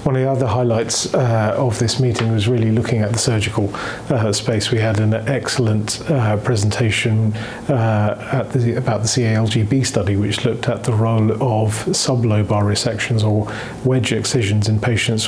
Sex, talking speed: male, 160 wpm